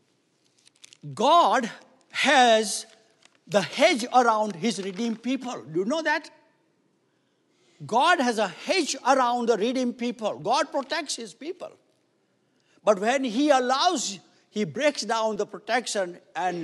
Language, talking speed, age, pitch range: English, 125 wpm, 60-79, 180-270 Hz